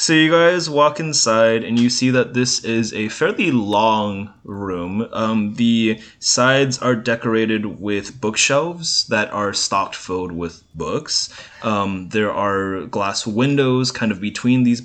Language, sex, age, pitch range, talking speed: English, male, 20-39, 105-135 Hz, 150 wpm